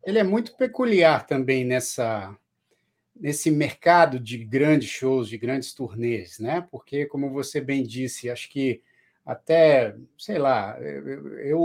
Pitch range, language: 125-175 Hz, Portuguese